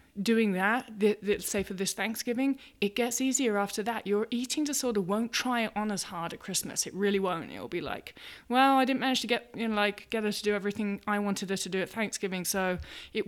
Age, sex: 20-39, female